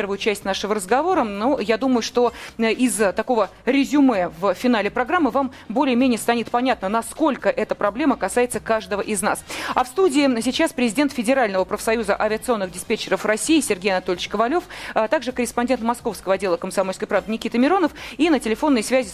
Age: 30-49